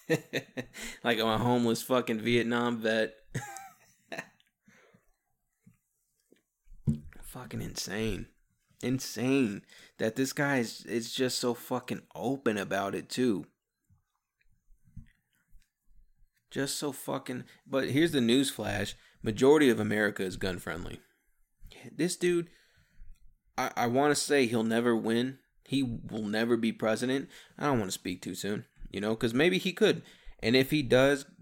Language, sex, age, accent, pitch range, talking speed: English, male, 20-39, American, 105-130 Hz, 130 wpm